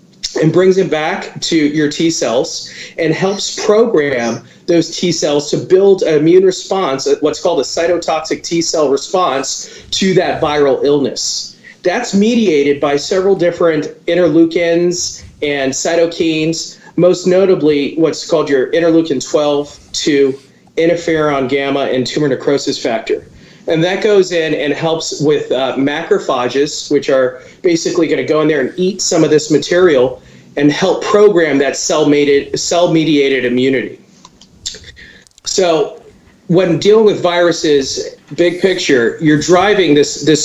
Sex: male